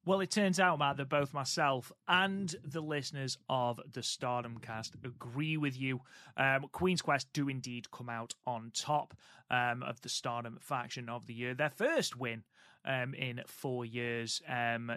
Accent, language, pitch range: British, English, 115-140 Hz